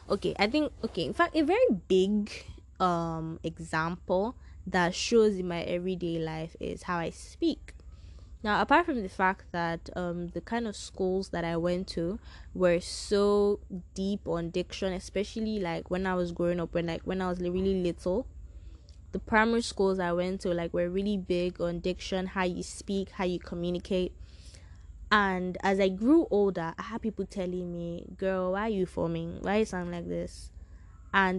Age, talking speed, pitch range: 10-29, 180 wpm, 165-195 Hz